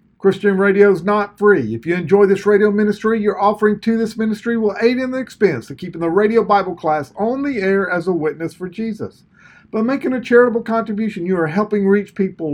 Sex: male